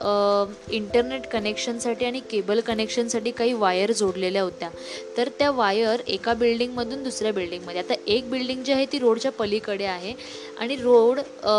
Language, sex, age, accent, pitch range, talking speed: Marathi, female, 20-39, native, 205-240 Hz, 150 wpm